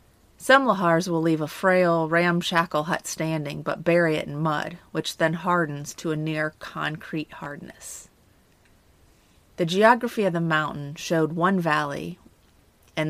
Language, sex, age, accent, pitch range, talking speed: English, female, 30-49, American, 150-175 Hz, 140 wpm